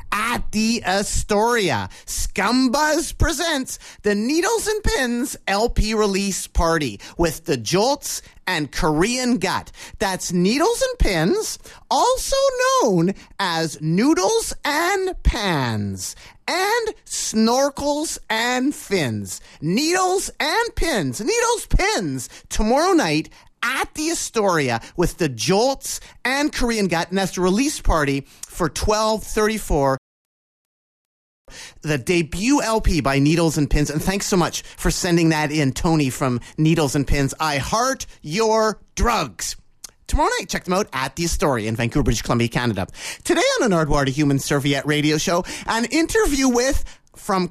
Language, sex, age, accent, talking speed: English, male, 30-49, American, 130 wpm